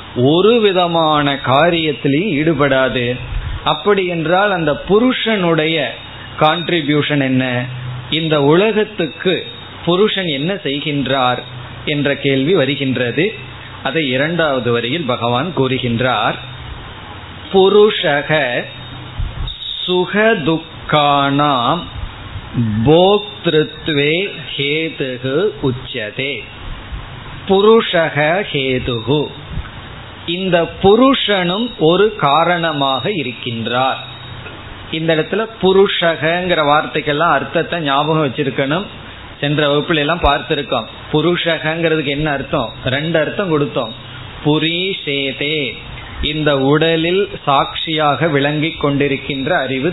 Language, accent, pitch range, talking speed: Tamil, native, 130-165 Hz, 40 wpm